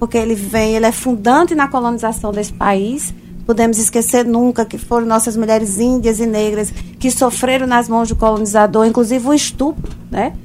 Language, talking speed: Portuguese, 170 wpm